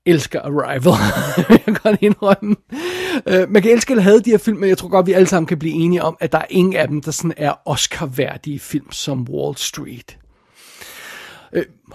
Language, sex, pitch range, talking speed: Danish, male, 160-205 Hz, 205 wpm